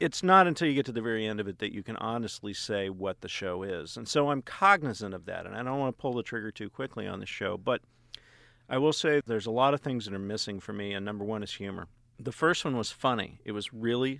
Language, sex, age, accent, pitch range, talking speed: English, male, 50-69, American, 105-135 Hz, 280 wpm